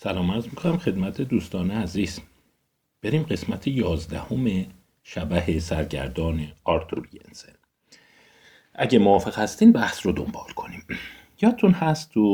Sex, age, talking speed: male, 50-69, 110 wpm